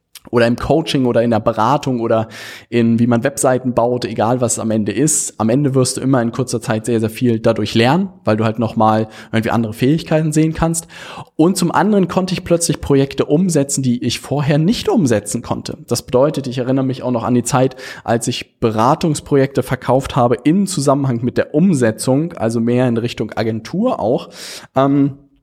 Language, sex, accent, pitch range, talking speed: German, male, German, 115-145 Hz, 195 wpm